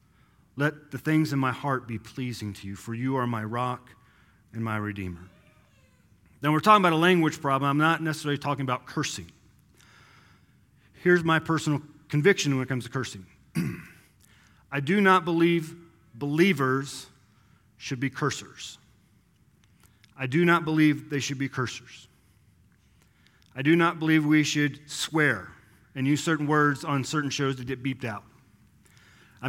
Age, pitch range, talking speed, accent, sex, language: 40-59, 130-170 Hz, 155 wpm, American, male, English